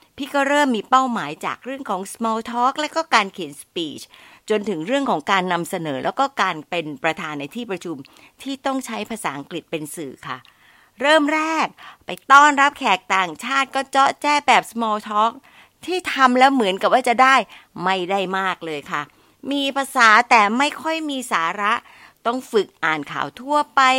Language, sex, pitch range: Thai, female, 185-280 Hz